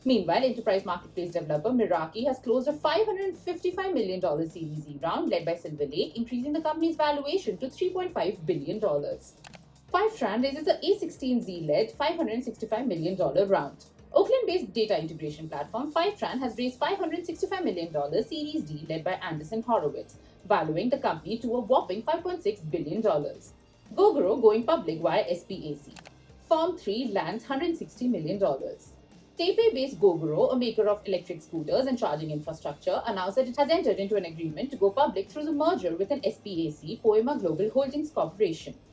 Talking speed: 150 wpm